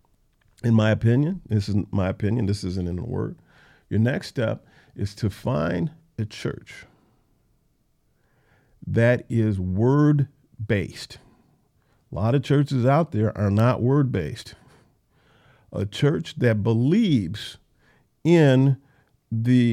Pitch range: 110-140 Hz